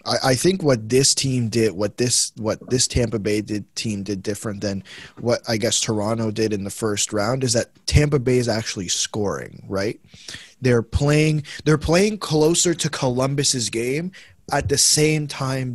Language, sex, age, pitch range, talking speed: English, male, 20-39, 120-150 Hz, 175 wpm